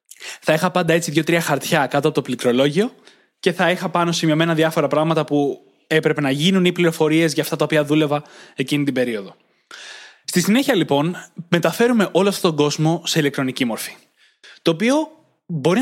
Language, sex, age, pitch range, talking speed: Greek, male, 20-39, 150-190 Hz, 170 wpm